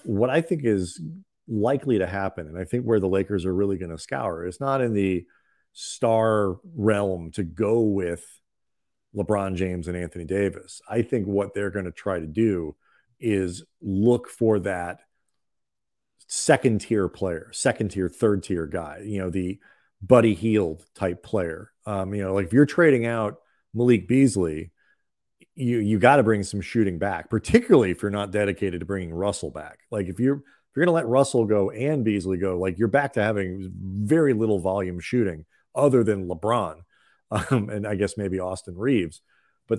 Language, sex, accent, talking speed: English, male, American, 180 wpm